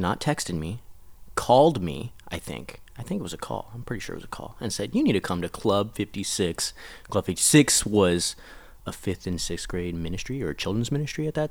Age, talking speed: 30-49, 230 wpm